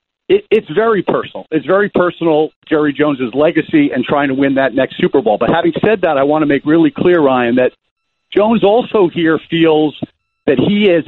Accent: American